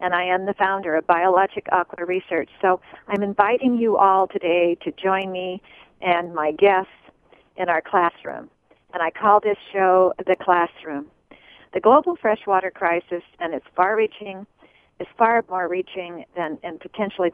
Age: 50-69